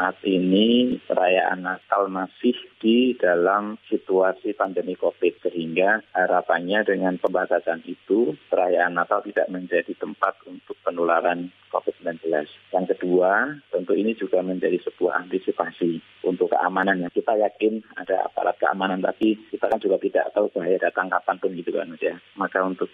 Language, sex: Indonesian, male